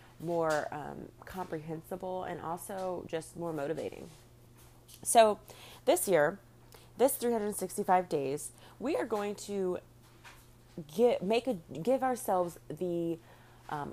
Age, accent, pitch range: 30-49, American, 150-185 Hz